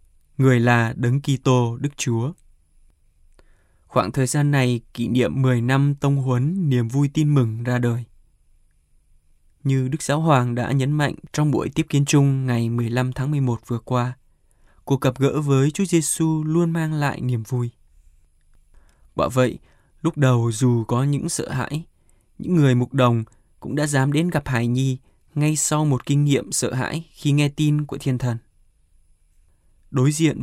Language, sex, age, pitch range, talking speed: Vietnamese, male, 20-39, 115-145 Hz, 170 wpm